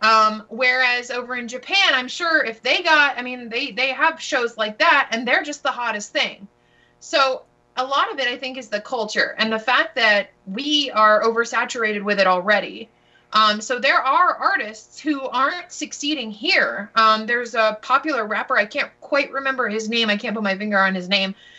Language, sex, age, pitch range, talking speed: English, female, 20-39, 215-275 Hz, 200 wpm